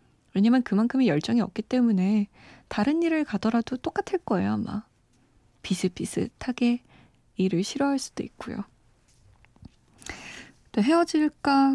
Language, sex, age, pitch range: Korean, female, 20-39, 185-250 Hz